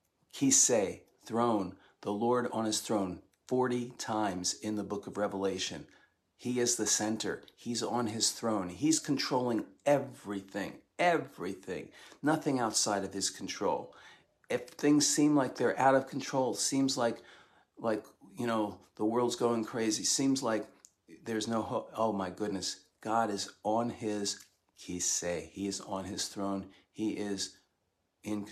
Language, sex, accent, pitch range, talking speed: English, male, American, 100-120 Hz, 145 wpm